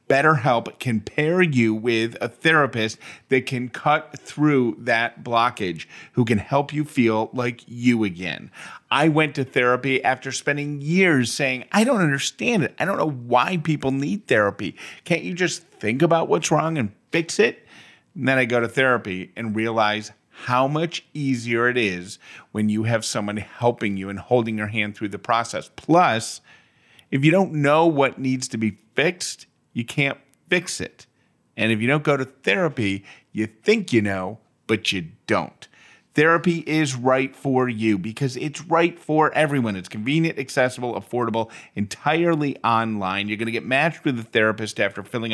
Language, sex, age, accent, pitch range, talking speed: English, male, 40-59, American, 110-145 Hz, 170 wpm